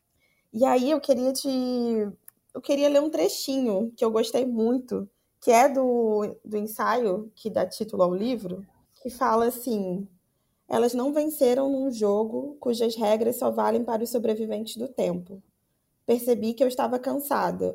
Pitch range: 205-250 Hz